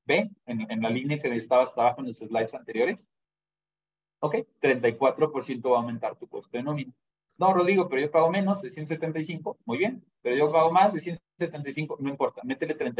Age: 30-49